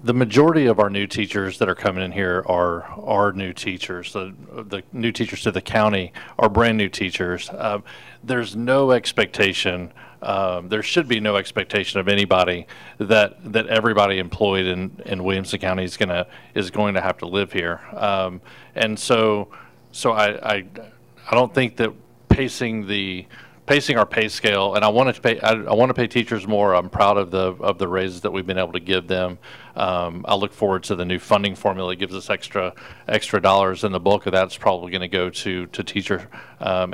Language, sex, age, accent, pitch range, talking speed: English, male, 40-59, American, 95-110 Hz, 205 wpm